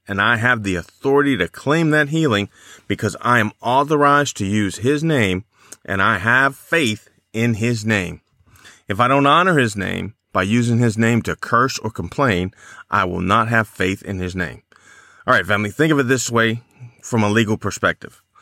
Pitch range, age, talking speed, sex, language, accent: 100-125 Hz, 40-59, 190 wpm, male, English, American